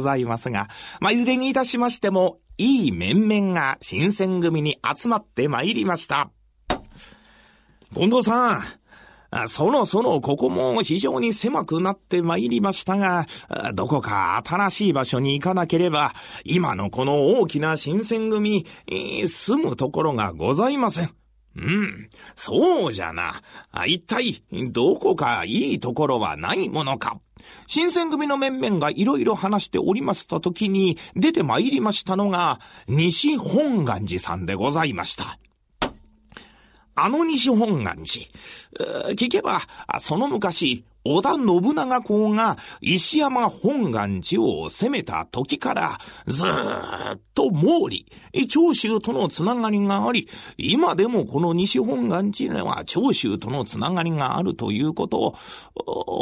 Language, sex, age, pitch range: Japanese, male, 40-59, 150-235 Hz